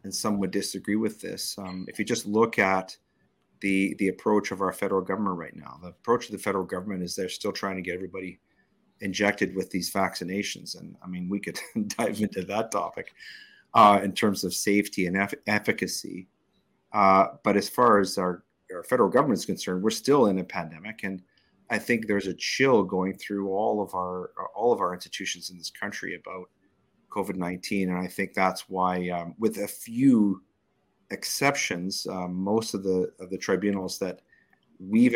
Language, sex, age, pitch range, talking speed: English, male, 40-59, 90-100 Hz, 190 wpm